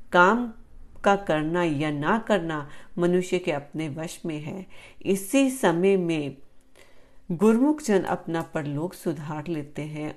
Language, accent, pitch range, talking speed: Hindi, native, 155-195 Hz, 130 wpm